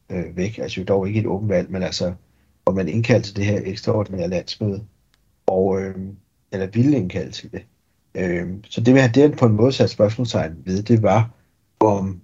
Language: Danish